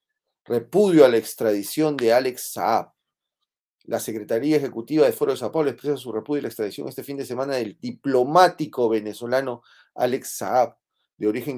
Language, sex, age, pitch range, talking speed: Spanish, male, 40-59, 105-150 Hz, 160 wpm